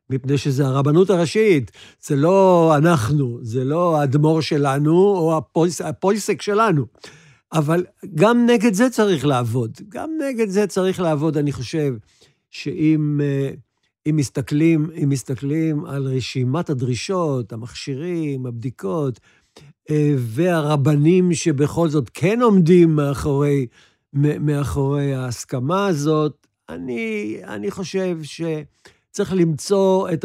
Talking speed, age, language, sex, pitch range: 105 wpm, 60-79, Hebrew, male, 140-185 Hz